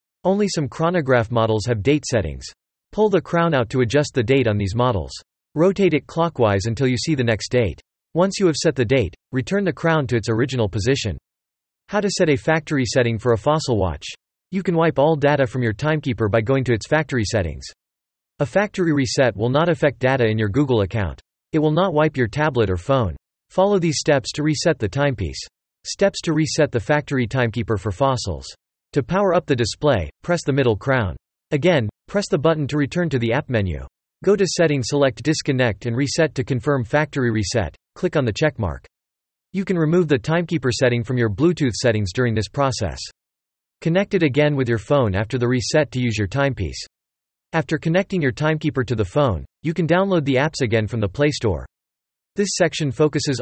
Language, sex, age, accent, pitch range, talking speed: English, male, 40-59, American, 110-155 Hz, 200 wpm